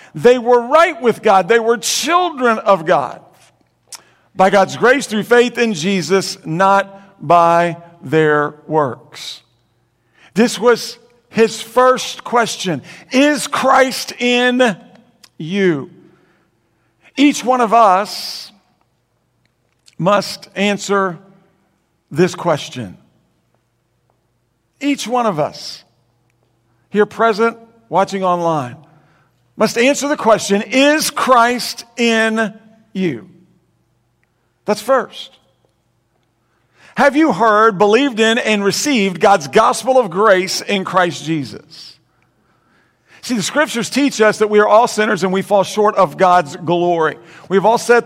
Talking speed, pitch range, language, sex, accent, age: 110 wpm, 175-240 Hz, English, male, American, 50-69